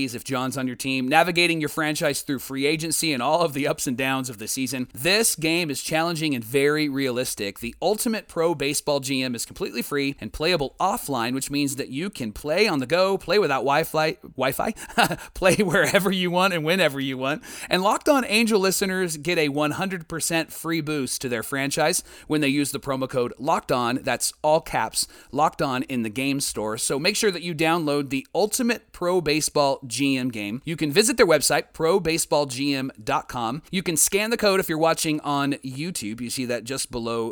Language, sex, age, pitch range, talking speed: English, male, 30-49, 135-175 Hz, 200 wpm